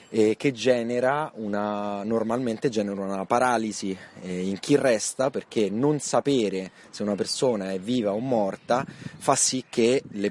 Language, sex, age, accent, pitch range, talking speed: Italian, male, 20-39, native, 105-140 Hz, 140 wpm